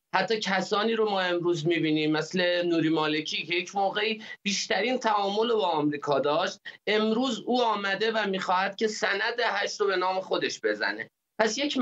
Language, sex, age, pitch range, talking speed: Persian, male, 30-49, 170-220 Hz, 170 wpm